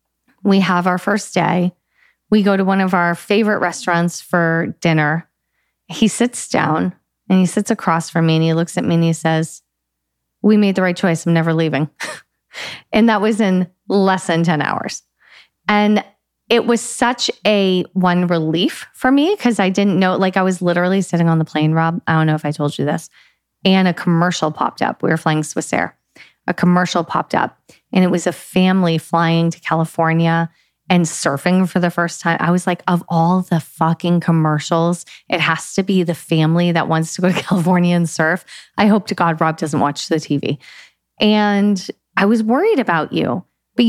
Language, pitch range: English, 165-205 Hz